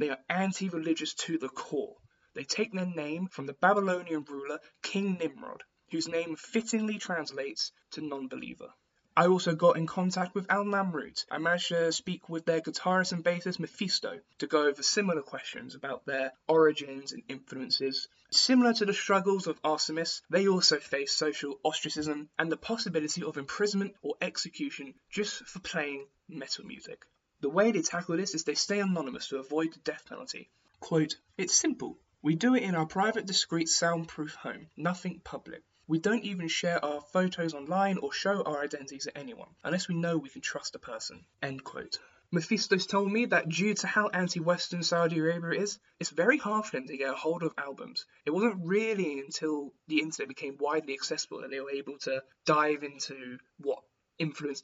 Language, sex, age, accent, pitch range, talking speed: English, male, 10-29, British, 150-195 Hz, 180 wpm